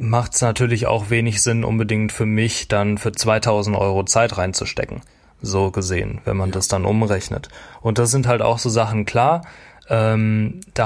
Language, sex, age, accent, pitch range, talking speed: German, male, 20-39, German, 100-120 Hz, 175 wpm